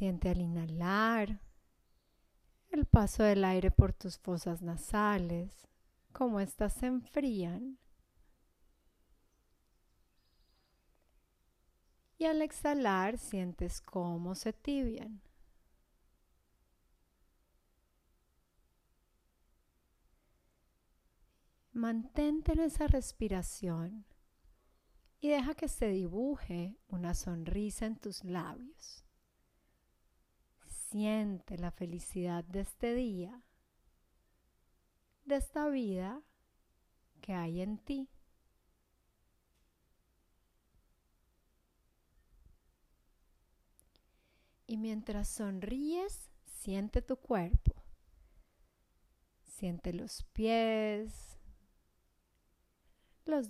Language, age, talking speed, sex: Spanish, 30-49, 65 wpm, female